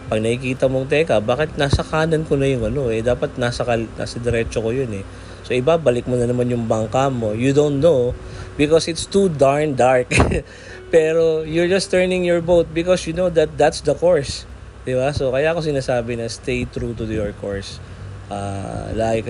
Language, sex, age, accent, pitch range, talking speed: Filipino, male, 20-39, native, 100-130 Hz, 195 wpm